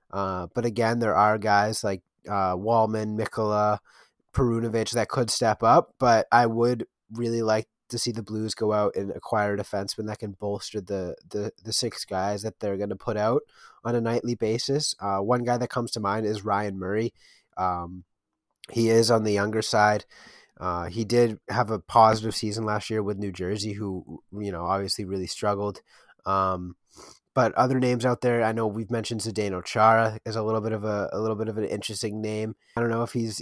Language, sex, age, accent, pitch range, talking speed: English, male, 20-39, American, 105-120 Hz, 205 wpm